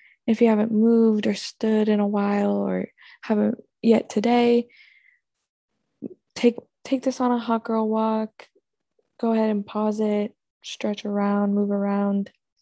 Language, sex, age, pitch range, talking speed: English, female, 10-29, 195-235 Hz, 145 wpm